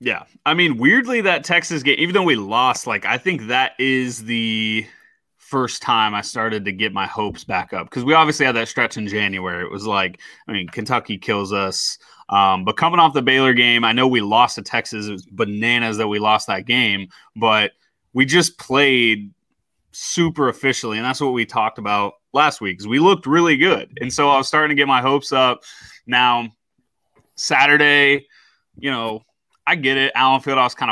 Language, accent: English, American